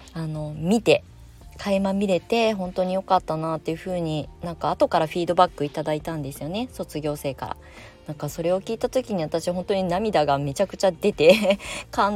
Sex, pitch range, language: female, 150-200 Hz, Japanese